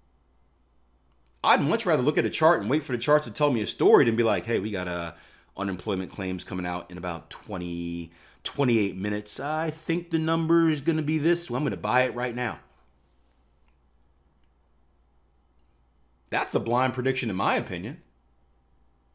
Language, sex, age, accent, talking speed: English, male, 40-59, American, 180 wpm